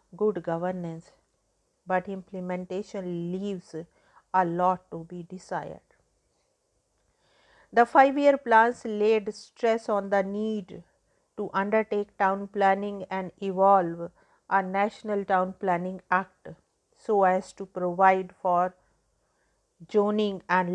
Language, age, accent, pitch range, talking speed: English, 50-69, Indian, 185-210 Hz, 105 wpm